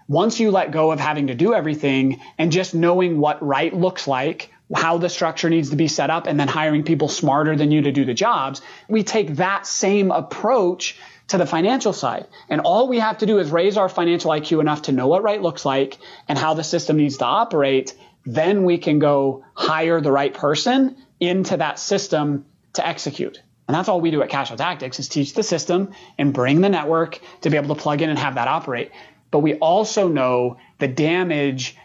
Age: 30-49